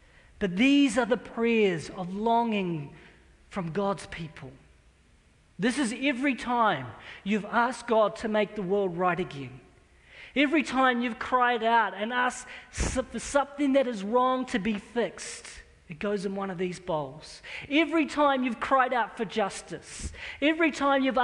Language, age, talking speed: English, 40-59, 155 wpm